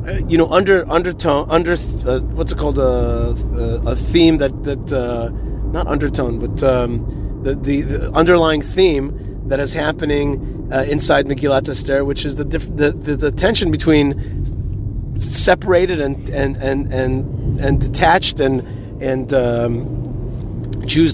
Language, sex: English, male